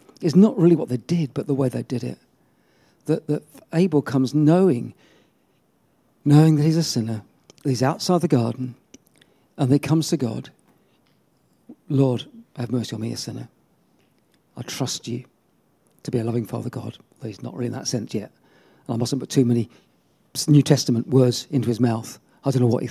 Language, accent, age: English, British, 40-59